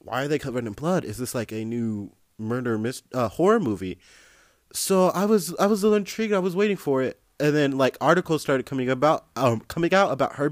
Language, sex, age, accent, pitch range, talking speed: English, male, 20-39, American, 110-165 Hz, 235 wpm